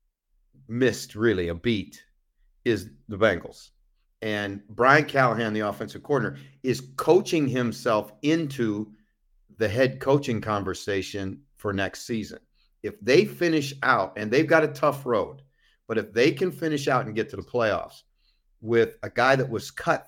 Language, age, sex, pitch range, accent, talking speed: English, 50-69, male, 105-140 Hz, American, 150 wpm